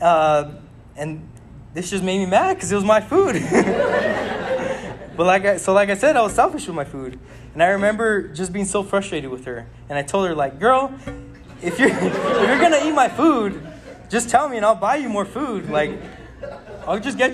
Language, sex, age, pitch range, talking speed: English, male, 20-39, 140-200 Hz, 215 wpm